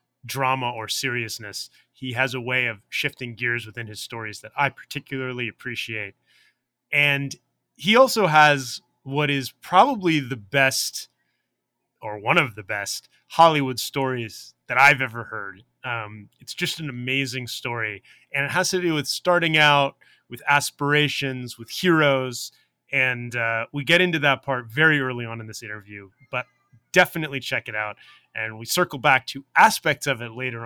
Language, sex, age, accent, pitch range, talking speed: English, male, 30-49, American, 120-150 Hz, 160 wpm